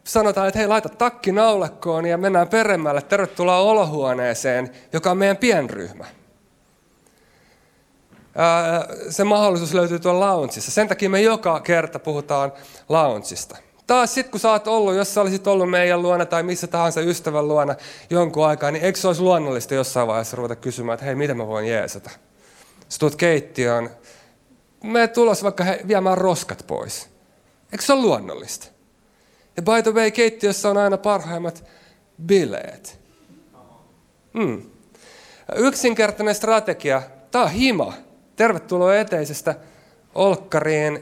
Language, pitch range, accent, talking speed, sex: Finnish, 150-205 Hz, native, 135 wpm, male